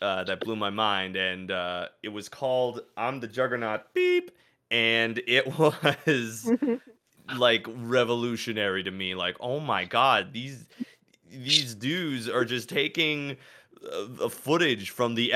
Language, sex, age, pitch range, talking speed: English, male, 20-39, 100-130 Hz, 140 wpm